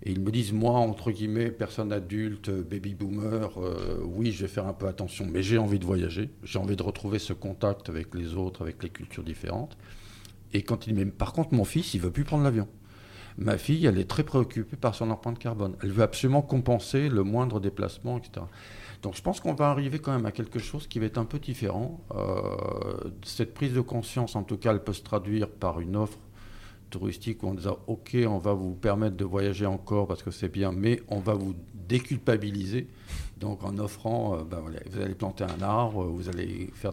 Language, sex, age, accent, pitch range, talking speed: French, male, 50-69, French, 95-115 Hz, 220 wpm